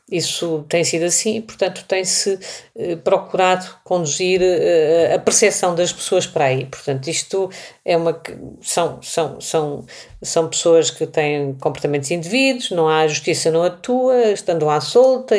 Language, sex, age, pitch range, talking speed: Portuguese, female, 50-69, 150-195 Hz, 150 wpm